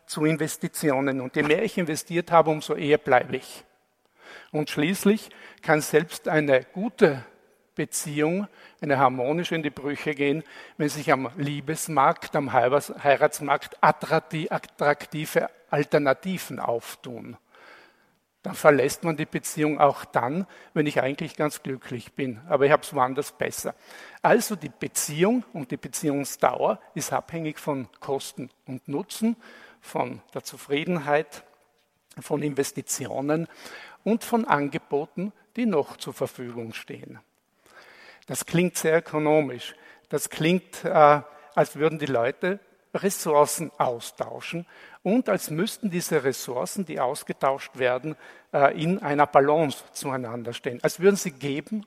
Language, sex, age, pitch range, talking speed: German, male, 50-69, 140-175 Hz, 125 wpm